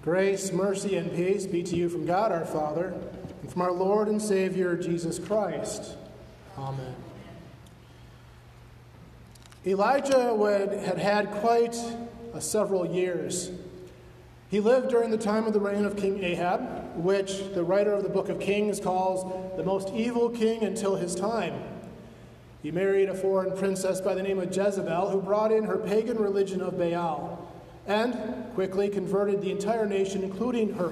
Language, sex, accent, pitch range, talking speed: English, male, American, 175-205 Hz, 155 wpm